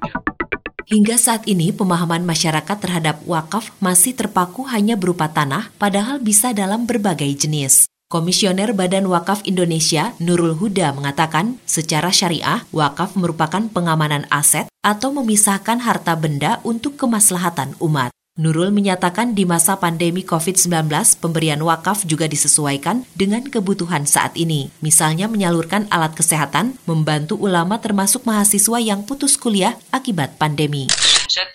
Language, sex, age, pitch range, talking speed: Indonesian, female, 30-49, 155-210 Hz, 125 wpm